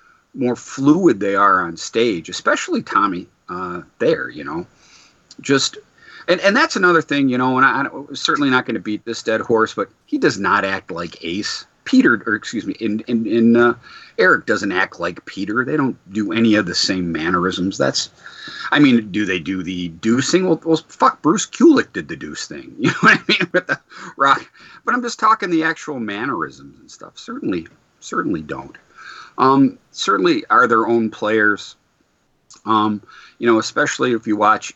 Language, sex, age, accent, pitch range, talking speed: English, male, 40-59, American, 110-160 Hz, 190 wpm